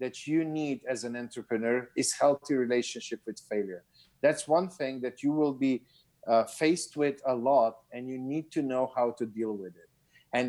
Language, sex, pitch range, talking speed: English, male, 120-150 Hz, 195 wpm